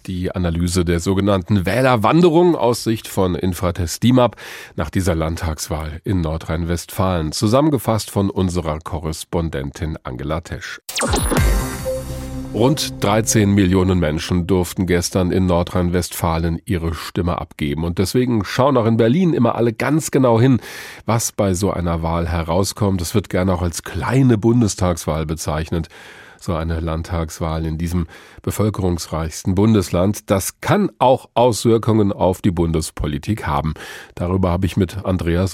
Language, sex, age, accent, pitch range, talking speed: German, male, 40-59, German, 85-115 Hz, 130 wpm